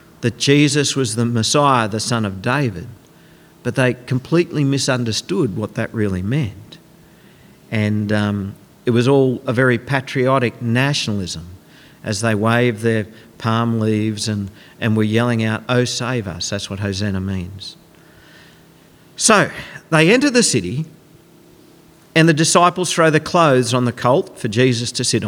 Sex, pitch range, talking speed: male, 115-160 Hz, 145 wpm